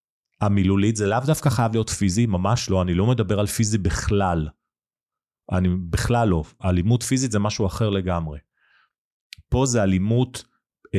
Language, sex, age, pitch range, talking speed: Hebrew, male, 30-49, 90-115 Hz, 155 wpm